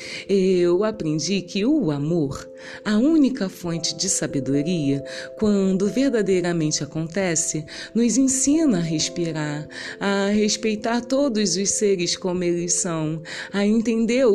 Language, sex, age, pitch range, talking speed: Portuguese, female, 30-49, 165-205 Hz, 115 wpm